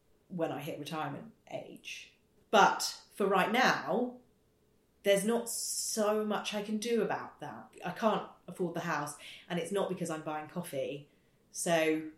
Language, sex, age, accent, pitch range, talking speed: English, female, 30-49, British, 165-215 Hz, 155 wpm